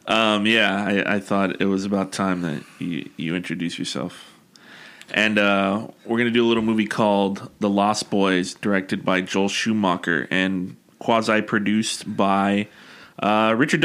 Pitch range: 105-125 Hz